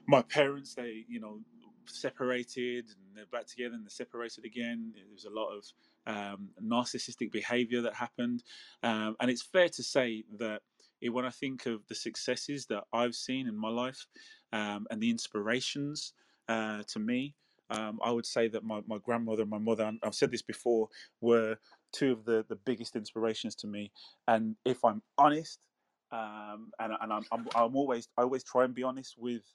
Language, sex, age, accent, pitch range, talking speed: English, male, 20-39, British, 110-125 Hz, 185 wpm